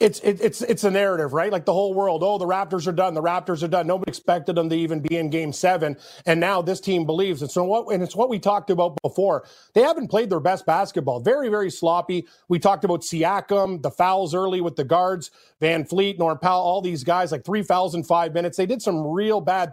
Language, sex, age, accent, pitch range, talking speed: English, male, 30-49, American, 170-210 Hz, 245 wpm